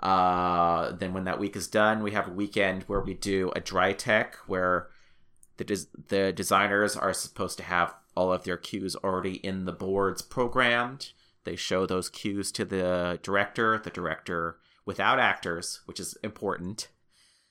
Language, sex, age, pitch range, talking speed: English, male, 30-49, 90-110 Hz, 170 wpm